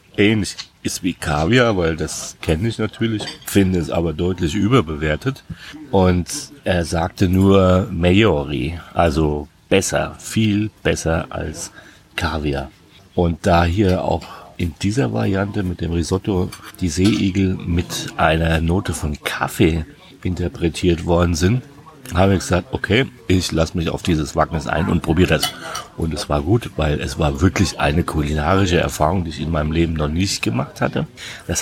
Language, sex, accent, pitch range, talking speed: German, male, German, 85-105 Hz, 150 wpm